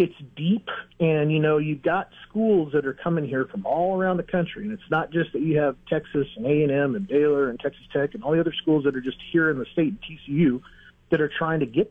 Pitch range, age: 130-165 Hz, 40-59